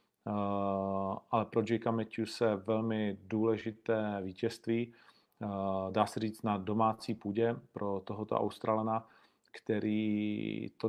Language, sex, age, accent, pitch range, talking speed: Czech, male, 40-59, native, 105-125 Hz, 115 wpm